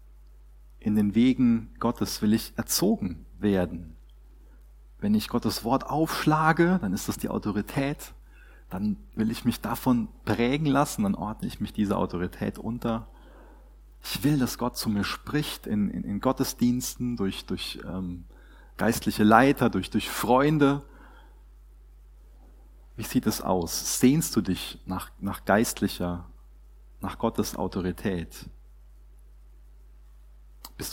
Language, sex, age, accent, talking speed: German, male, 30-49, German, 125 wpm